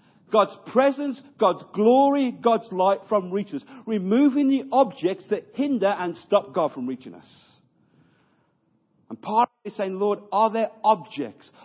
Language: English